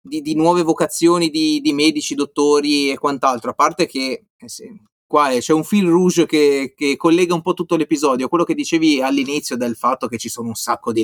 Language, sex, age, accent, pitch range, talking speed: Italian, male, 30-49, native, 140-170 Hz, 215 wpm